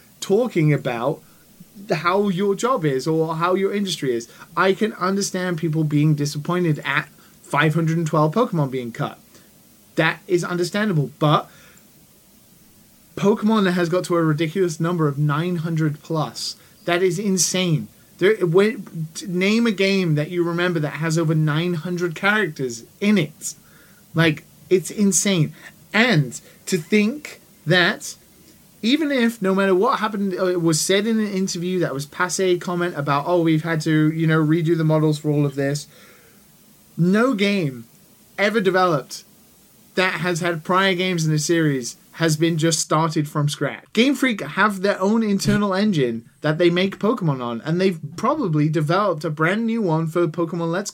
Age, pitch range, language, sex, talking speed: 30-49, 160-200 Hz, English, male, 160 wpm